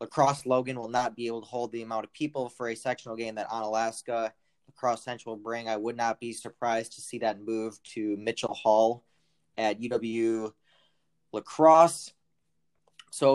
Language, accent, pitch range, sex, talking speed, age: English, American, 115-135 Hz, male, 170 wpm, 20-39